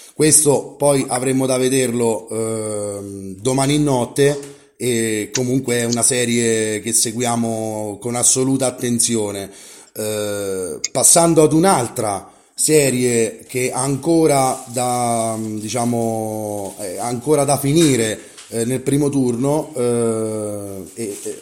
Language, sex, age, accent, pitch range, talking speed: Italian, male, 30-49, native, 115-140 Hz, 100 wpm